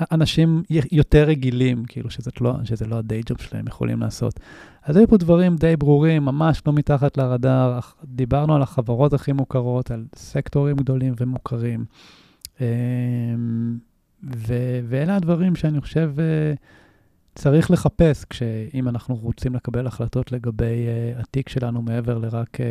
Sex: male